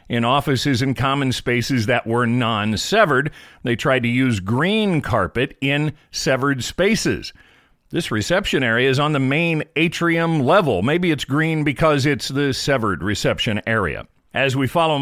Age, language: 40-59, English